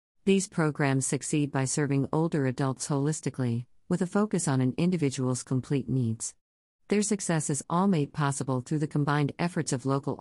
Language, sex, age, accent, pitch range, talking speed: English, female, 50-69, American, 130-155 Hz, 165 wpm